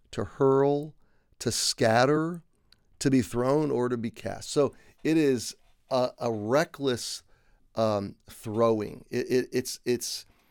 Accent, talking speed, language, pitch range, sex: American, 125 wpm, English, 110-135 Hz, male